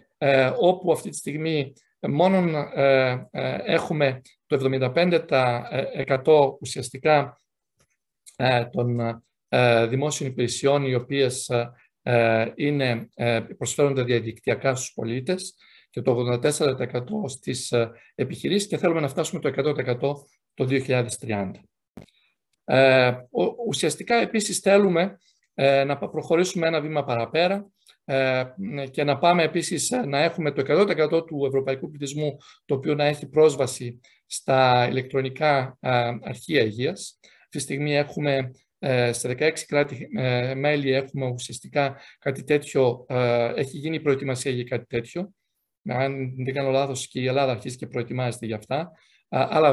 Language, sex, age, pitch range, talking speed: Greek, male, 50-69, 125-155 Hz, 105 wpm